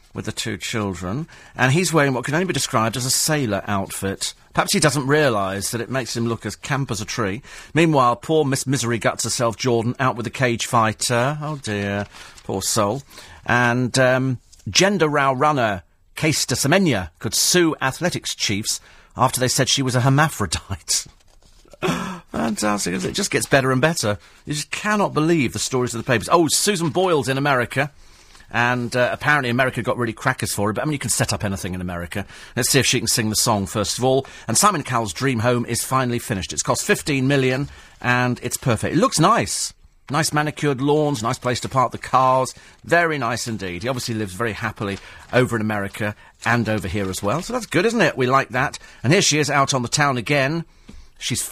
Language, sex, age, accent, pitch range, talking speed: English, male, 40-59, British, 105-140 Hz, 210 wpm